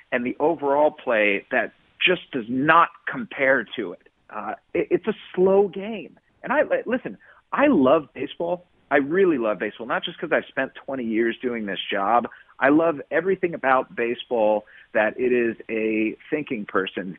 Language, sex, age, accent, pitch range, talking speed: English, male, 40-59, American, 120-175 Hz, 170 wpm